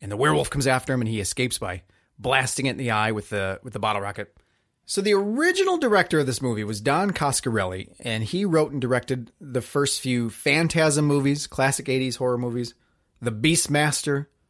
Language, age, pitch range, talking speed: English, 30-49, 130-185 Hz, 195 wpm